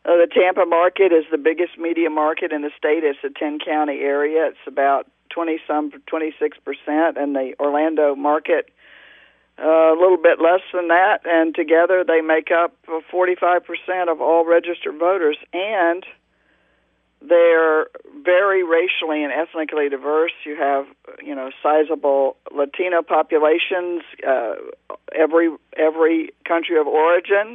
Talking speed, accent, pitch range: 145 wpm, American, 155-180 Hz